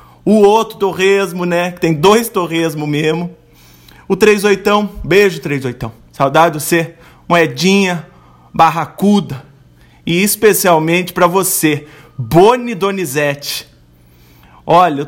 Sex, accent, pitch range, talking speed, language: male, Brazilian, 125-175 Hz, 105 wpm, Portuguese